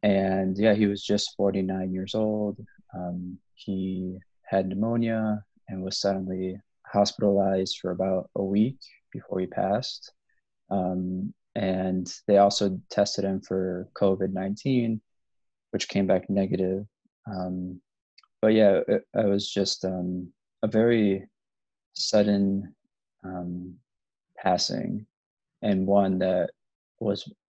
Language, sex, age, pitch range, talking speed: English, male, 20-39, 95-110 Hz, 115 wpm